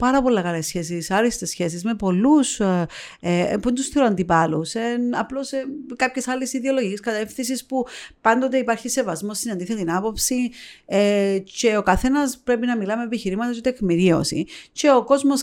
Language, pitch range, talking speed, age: Greek, 190-235 Hz, 165 wpm, 40-59